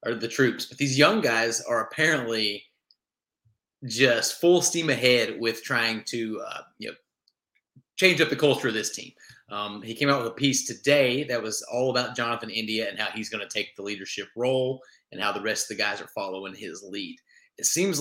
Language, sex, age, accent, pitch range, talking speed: English, male, 30-49, American, 115-140 Hz, 205 wpm